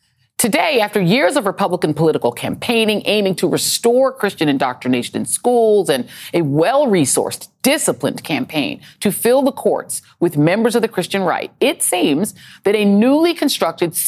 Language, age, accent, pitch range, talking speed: English, 40-59, American, 160-225 Hz, 150 wpm